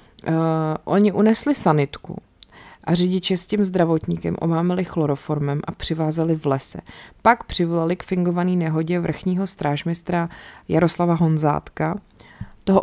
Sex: female